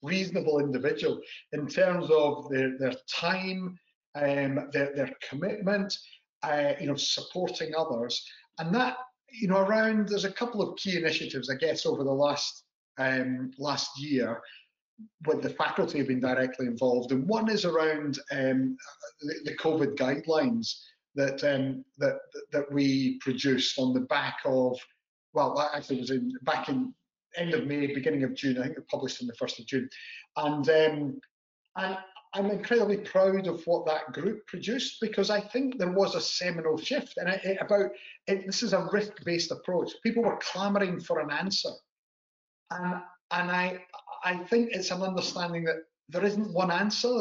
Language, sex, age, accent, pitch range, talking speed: English, male, 40-59, British, 140-200 Hz, 165 wpm